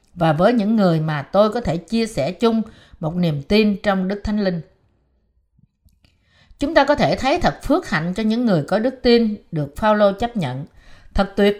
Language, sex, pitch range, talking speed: Vietnamese, female, 175-235 Hz, 200 wpm